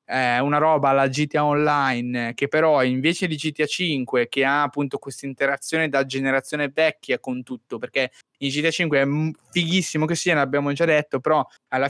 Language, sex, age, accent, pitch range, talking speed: Italian, male, 20-39, native, 130-150 Hz, 180 wpm